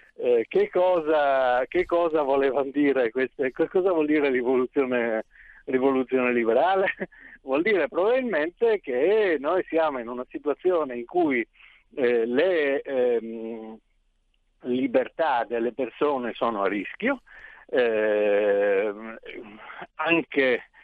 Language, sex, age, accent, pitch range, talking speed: Italian, male, 60-79, native, 115-180 Hz, 105 wpm